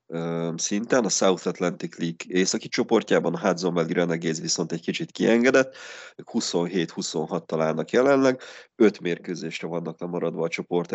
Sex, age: male, 30-49